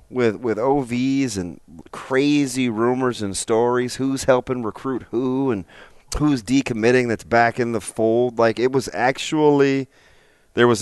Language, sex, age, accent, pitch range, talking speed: English, male, 30-49, American, 95-120 Hz, 145 wpm